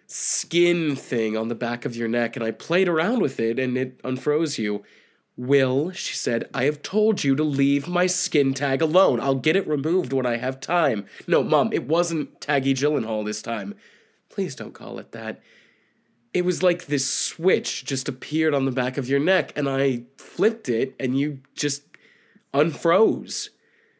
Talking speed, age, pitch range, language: 185 wpm, 20-39, 125-160 Hz, English